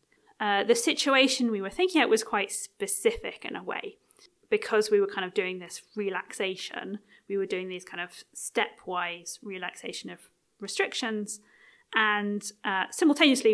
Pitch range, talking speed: 195-255 Hz, 150 wpm